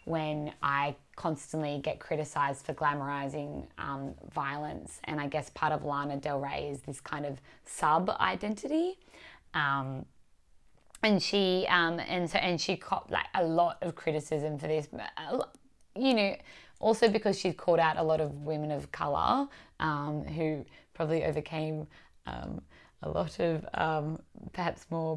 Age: 20-39